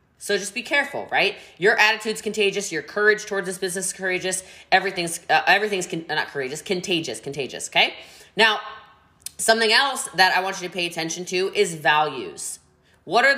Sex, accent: female, American